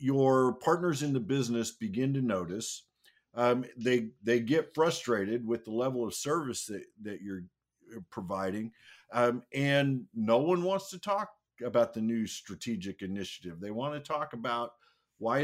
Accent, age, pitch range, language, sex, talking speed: American, 50-69, 115-150 Hz, English, male, 155 wpm